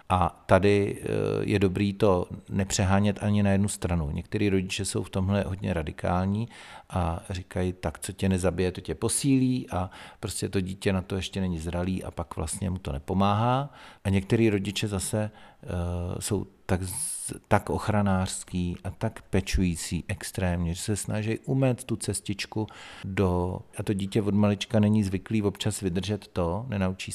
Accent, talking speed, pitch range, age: native, 155 wpm, 95-110 Hz, 40-59